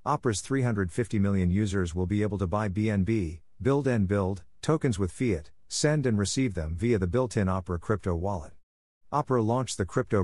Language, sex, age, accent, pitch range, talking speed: English, male, 50-69, American, 90-115 Hz, 180 wpm